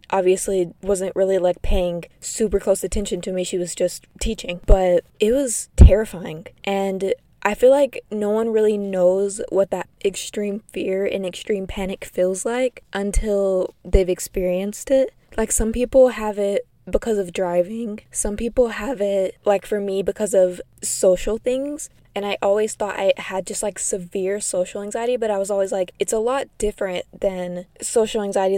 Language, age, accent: English, 20-39, American